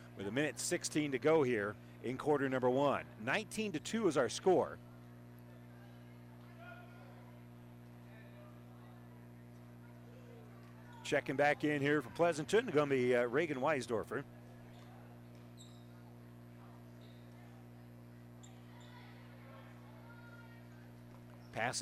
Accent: American